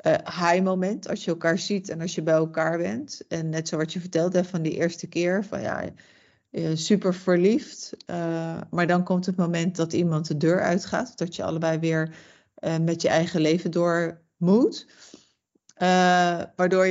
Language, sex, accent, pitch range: Dutch, female, Dutch, 175-200 Hz